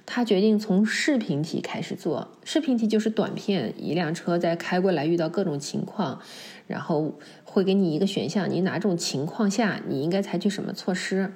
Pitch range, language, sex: 175-220 Hz, Chinese, female